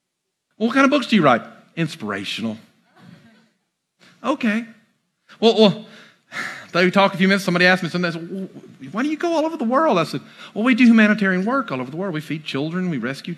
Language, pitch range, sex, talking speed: English, 155-220 Hz, male, 205 wpm